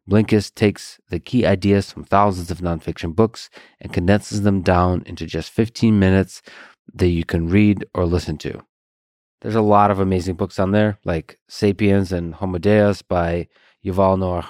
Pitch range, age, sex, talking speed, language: 90-105 Hz, 30-49, male, 170 wpm, English